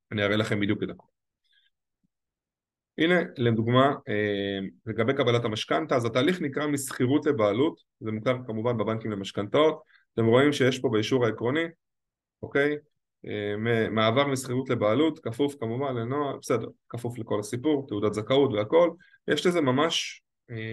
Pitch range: 110-140 Hz